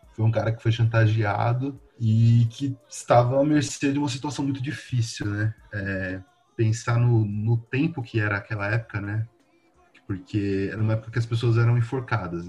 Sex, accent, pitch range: male, Brazilian, 105-130 Hz